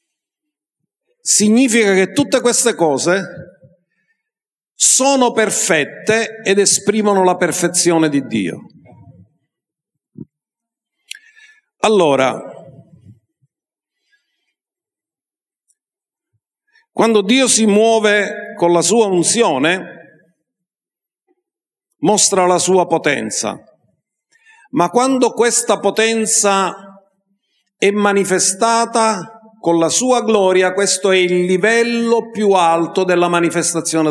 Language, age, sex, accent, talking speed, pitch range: Italian, 50-69, male, native, 75 wpm, 160-230 Hz